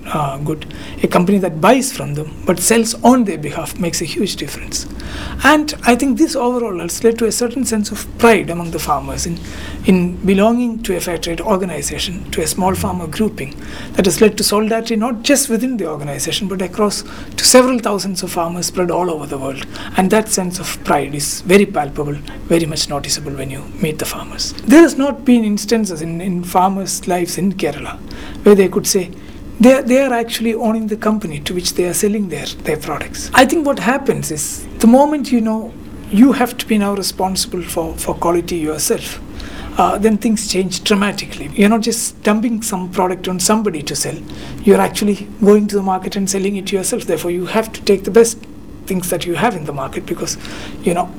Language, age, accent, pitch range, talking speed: English, 60-79, Indian, 175-225 Hz, 205 wpm